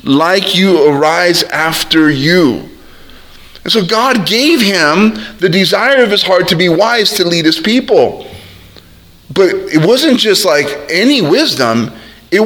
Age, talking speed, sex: 40-59, 145 wpm, male